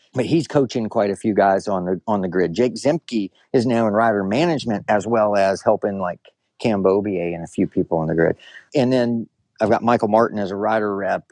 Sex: male